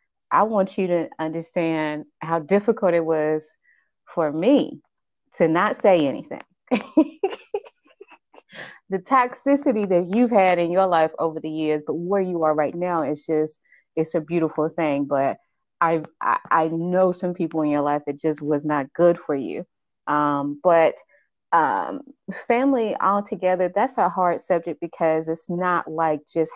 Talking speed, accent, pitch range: 160 wpm, American, 150-180 Hz